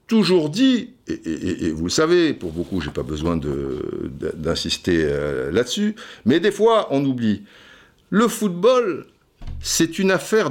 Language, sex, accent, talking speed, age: French, male, French, 150 wpm, 60-79